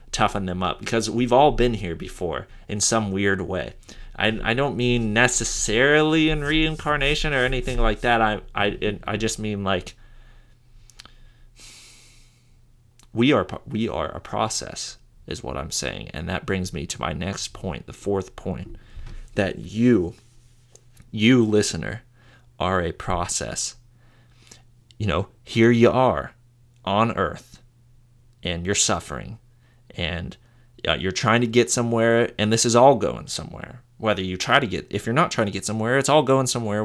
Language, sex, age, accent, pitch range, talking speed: English, male, 30-49, American, 105-120 Hz, 160 wpm